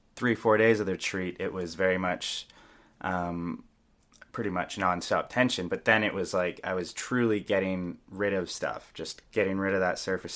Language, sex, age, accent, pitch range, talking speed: English, male, 20-39, American, 90-110 Hz, 190 wpm